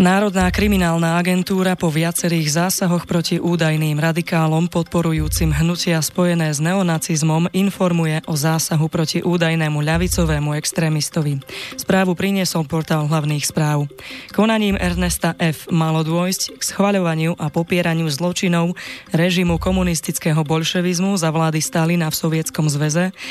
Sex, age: female, 20-39